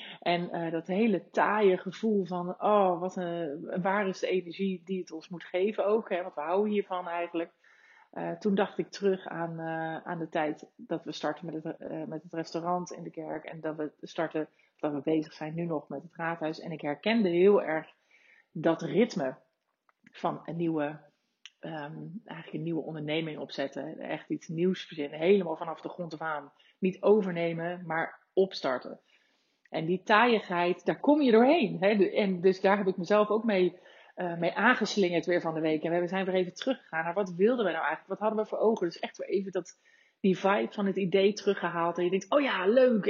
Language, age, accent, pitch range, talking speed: Dutch, 30-49, Dutch, 165-205 Hz, 205 wpm